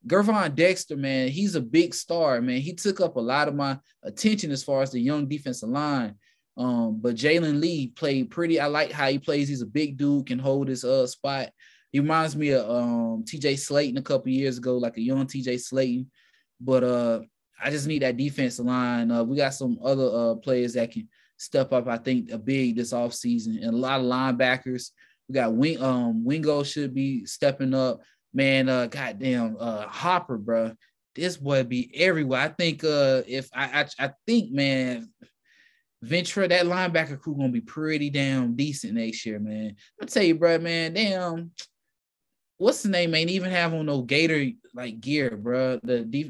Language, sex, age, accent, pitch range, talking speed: English, male, 20-39, American, 125-160 Hz, 190 wpm